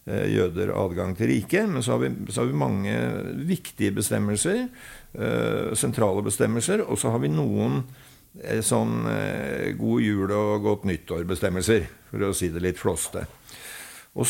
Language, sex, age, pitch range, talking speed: English, male, 60-79, 95-130 Hz, 150 wpm